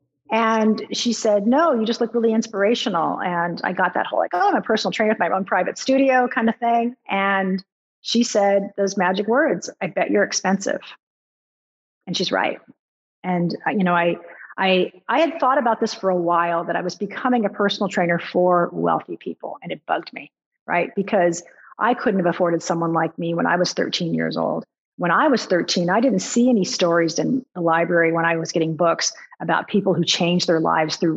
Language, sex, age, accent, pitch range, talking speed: English, female, 40-59, American, 175-225 Hz, 205 wpm